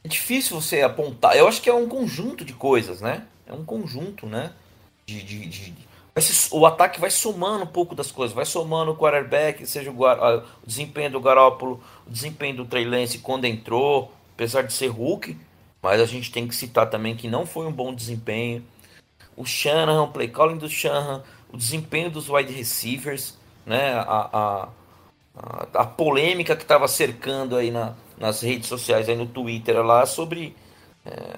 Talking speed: 180 wpm